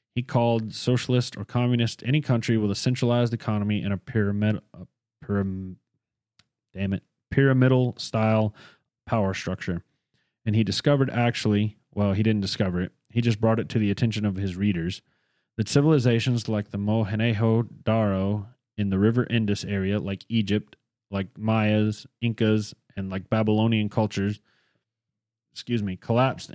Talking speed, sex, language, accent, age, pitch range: 140 wpm, male, English, American, 30-49, 100-120 Hz